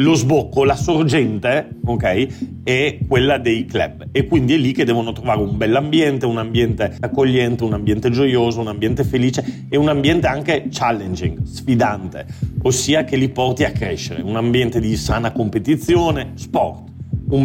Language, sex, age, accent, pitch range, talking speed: Italian, male, 40-59, native, 115-135 Hz, 160 wpm